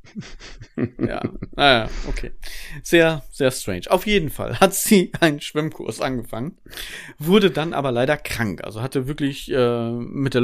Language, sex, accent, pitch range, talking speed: German, male, German, 120-150 Hz, 145 wpm